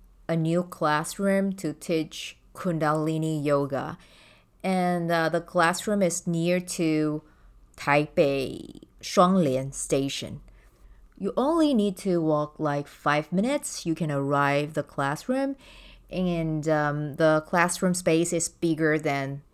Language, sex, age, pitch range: Chinese, female, 30-49, 145-180 Hz